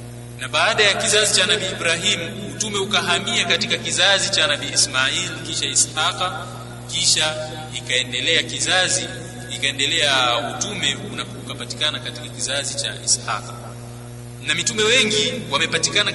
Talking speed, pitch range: 110 wpm, 120-130 Hz